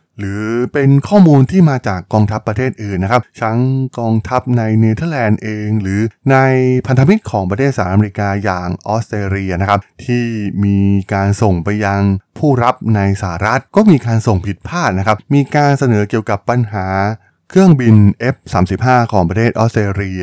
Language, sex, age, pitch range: Thai, male, 20-39, 95-125 Hz